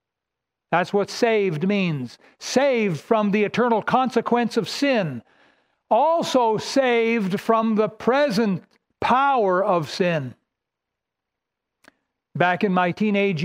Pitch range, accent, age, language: 175-225 Hz, American, 60-79, English